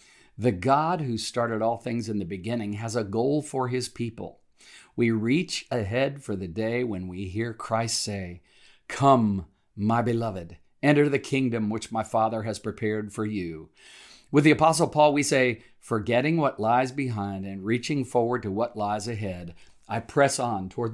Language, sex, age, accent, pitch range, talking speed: English, male, 50-69, American, 100-125 Hz, 170 wpm